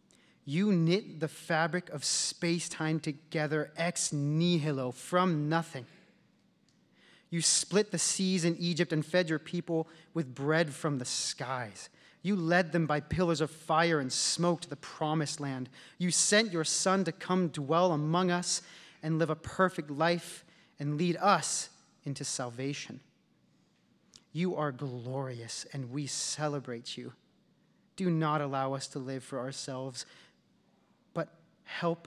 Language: English